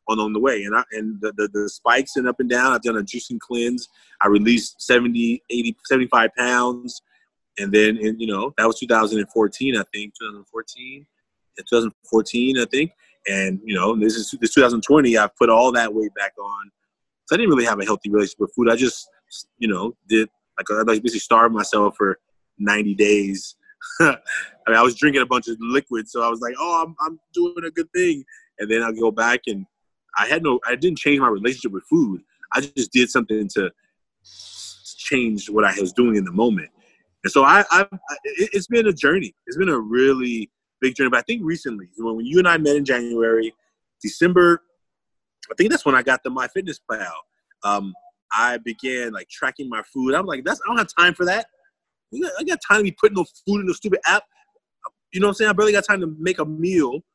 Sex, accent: male, American